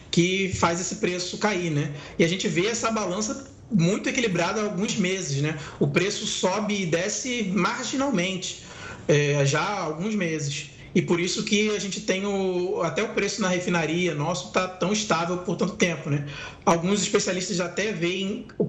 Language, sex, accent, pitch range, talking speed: Portuguese, male, Brazilian, 155-200 Hz, 175 wpm